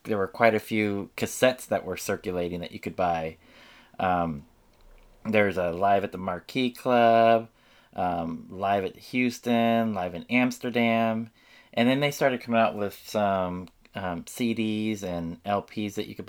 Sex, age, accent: male, 20-39, American